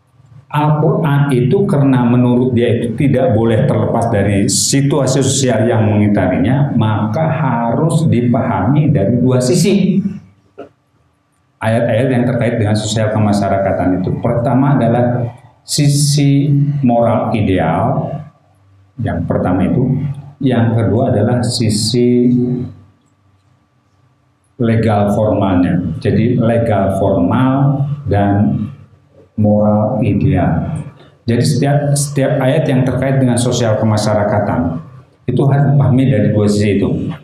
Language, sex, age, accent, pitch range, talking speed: Indonesian, male, 50-69, native, 110-140 Hz, 100 wpm